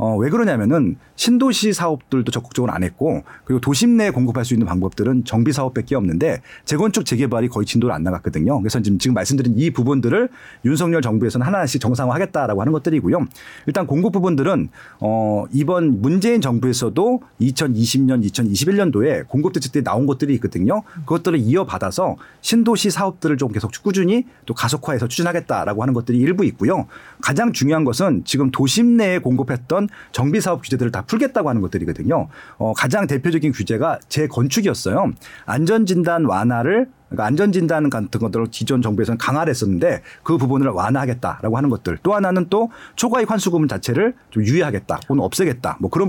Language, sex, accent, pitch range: Korean, male, native, 115-170 Hz